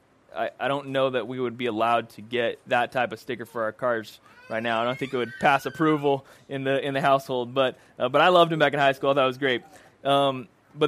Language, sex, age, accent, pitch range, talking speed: English, male, 20-39, American, 125-160 Hz, 270 wpm